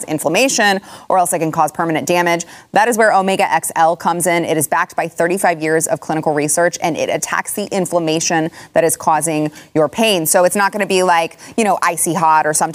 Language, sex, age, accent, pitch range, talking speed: English, female, 20-39, American, 160-210 Hz, 220 wpm